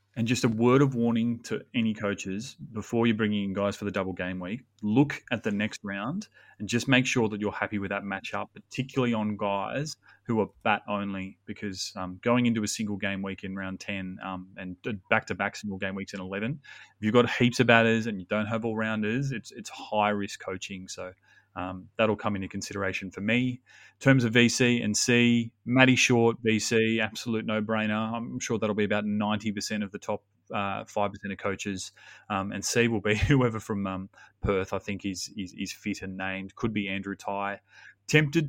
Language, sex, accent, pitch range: English, male, Australian, 95-115 Hz